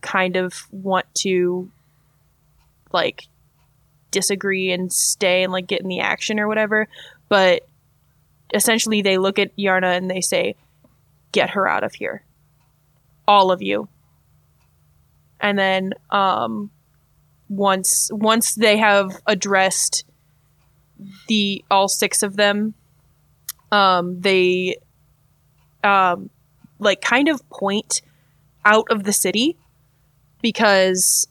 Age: 20-39